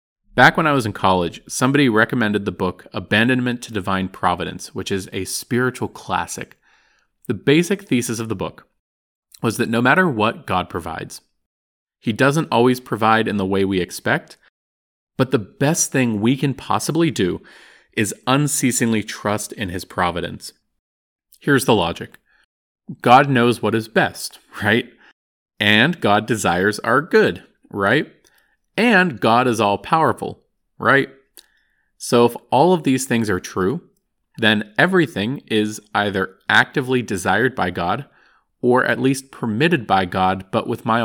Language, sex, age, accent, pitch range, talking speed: English, male, 40-59, American, 95-130 Hz, 145 wpm